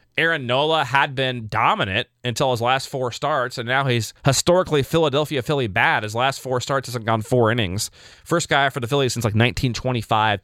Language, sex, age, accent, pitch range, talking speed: English, male, 30-49, American, 115-150 Hz, 190 wpm